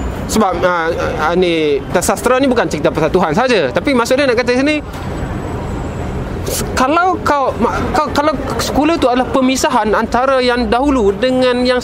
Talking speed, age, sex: 155 wpm, 20-39, male